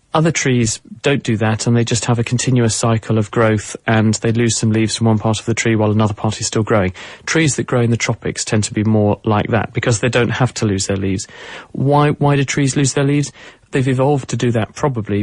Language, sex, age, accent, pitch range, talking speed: English, male, 30-49, British, 110-130 Hz, 250 wpm